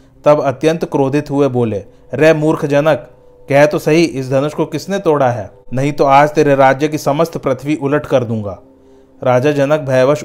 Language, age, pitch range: Hindi, 40-59, 130-150 Hz